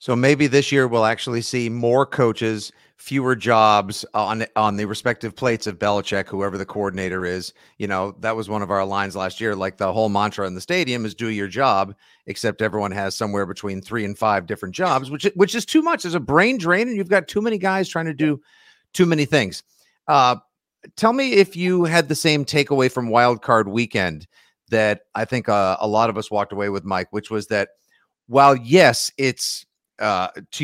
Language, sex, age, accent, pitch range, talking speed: English, male, 50-69, American, 105-135 Hz, 210 wpm